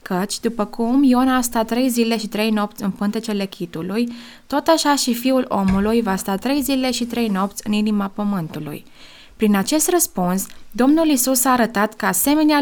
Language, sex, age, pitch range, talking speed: Romanian, female, 20-39, 205-250 Hz, 180 wpm